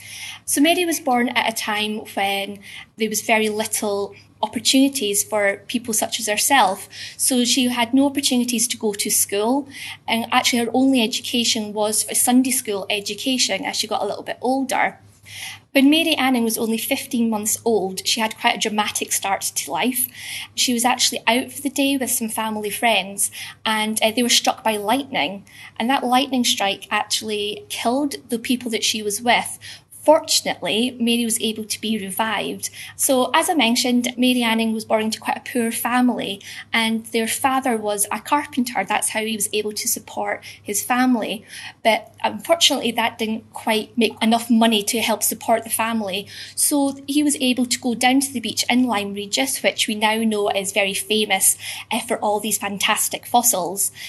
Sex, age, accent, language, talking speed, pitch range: female, 20-39, British, English, 180 wpm, 215-250 Hz